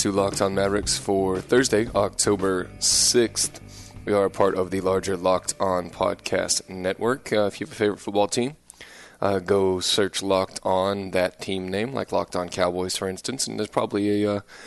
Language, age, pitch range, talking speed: English, 20-39, 90-100 Hz, 185 wpm